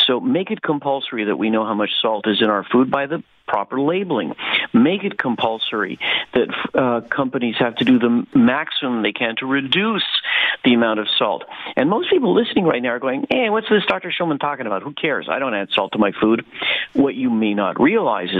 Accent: American